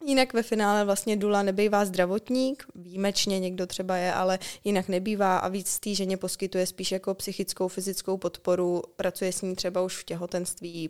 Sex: female